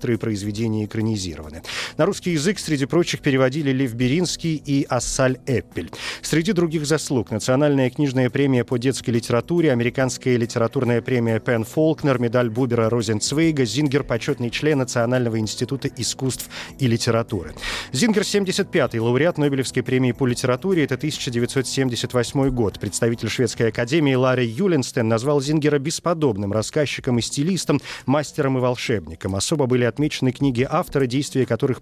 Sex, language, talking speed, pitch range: male, Russian, 130 wpm, 120-150 Hz